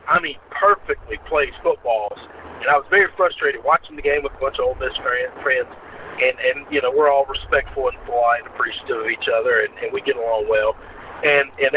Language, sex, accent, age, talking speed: English, male, American, 50-69, 215 wpm